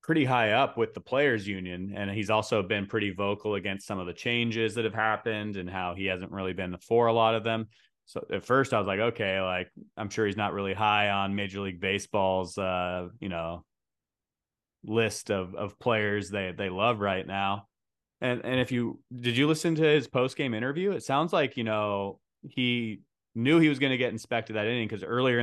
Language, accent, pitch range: English, American, 100-120 Hz